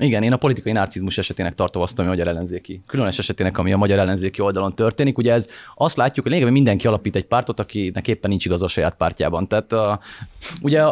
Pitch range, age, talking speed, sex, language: 95-140 Hz, 30-49, 215 wpm, male, Hungarian